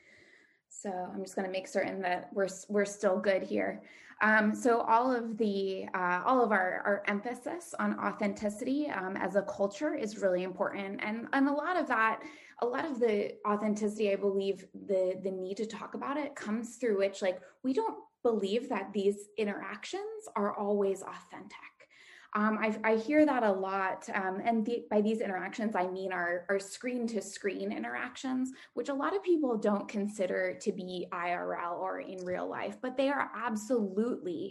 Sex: female